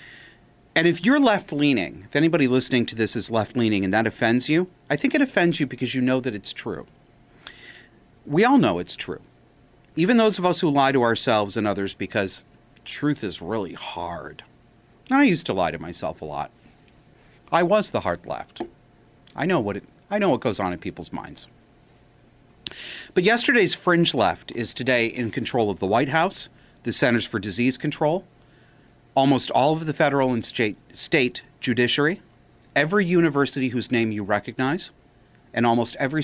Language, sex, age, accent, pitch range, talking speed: English, male, 40-59, American, 115-150 Hz, 170 wpm